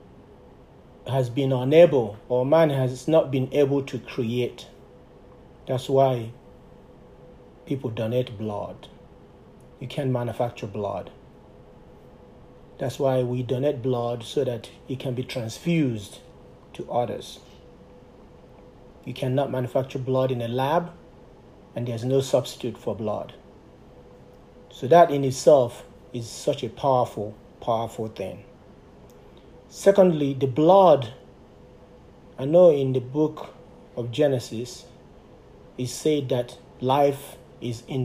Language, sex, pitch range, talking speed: English, male, 120-140 Hz, 115 wpm